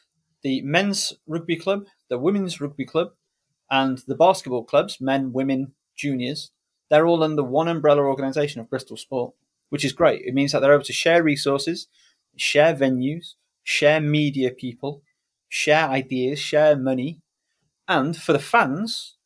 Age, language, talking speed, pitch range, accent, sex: 30-49, English, 150 wpm, 130-165 Hz, British, male